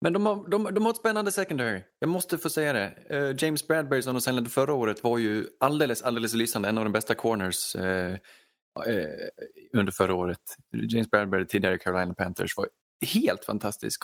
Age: 20-39